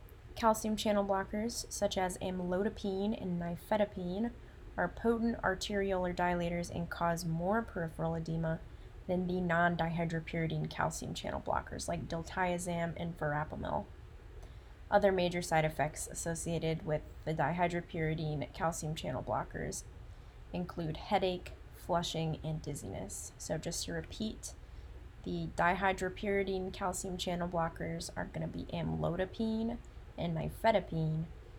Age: 20-39